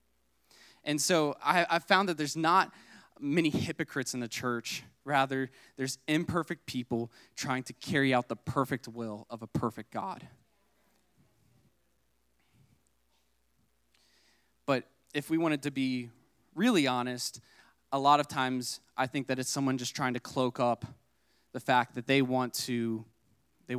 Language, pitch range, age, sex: English, 120-140 Hz, 20-39, male